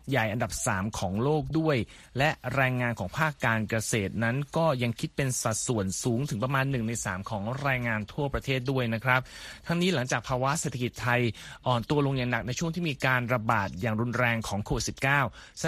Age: 30-49